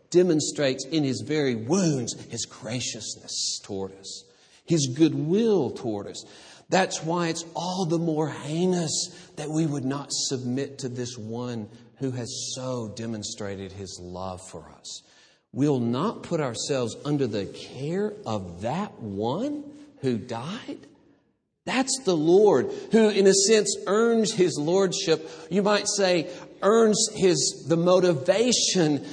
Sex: male